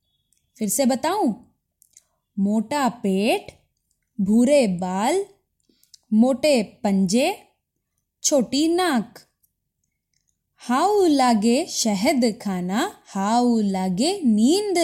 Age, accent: 20-39, native